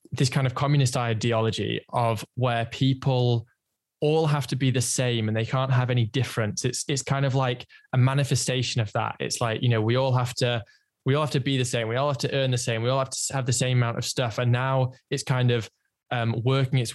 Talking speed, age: 245 wpm, 10-29